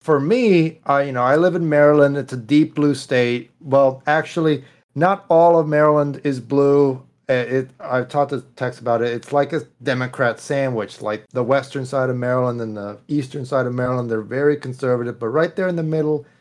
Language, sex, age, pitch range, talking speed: English, male, 40-59, 120-150 Hz, 195 wpm